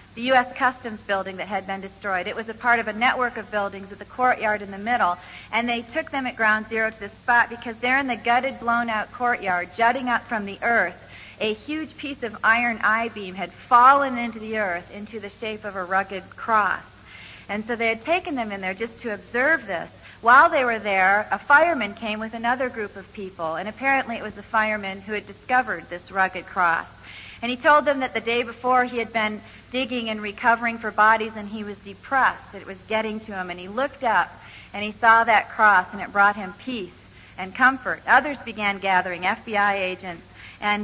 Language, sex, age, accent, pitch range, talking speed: English, female, 40-59, American, 205-255 Hz, 215 wpm